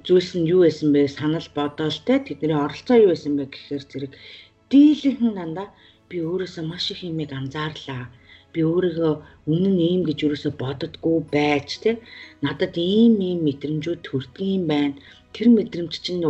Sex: female